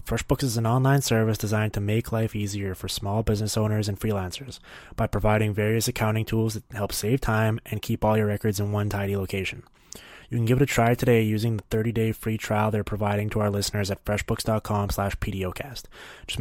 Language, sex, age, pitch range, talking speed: English, male, 20-39, 105-115 Hz, 205 wpm